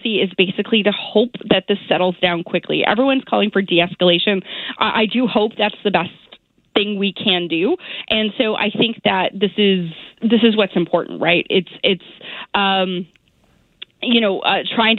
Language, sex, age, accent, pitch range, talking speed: English, female, 20-39, American, 180-215 Hz, 170 wpm